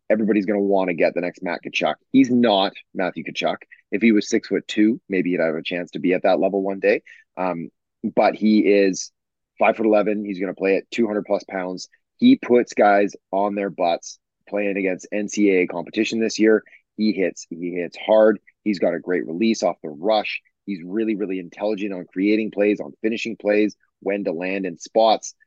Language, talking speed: English, 205 wpm